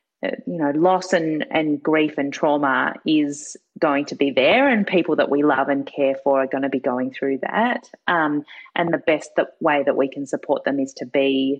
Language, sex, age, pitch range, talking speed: English, female, 30-49, 140-185 Hz, 210 wpm